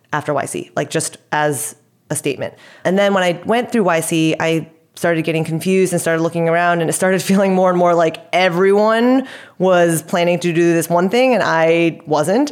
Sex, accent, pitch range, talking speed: female, American, 165-205 Hz, 195 wpm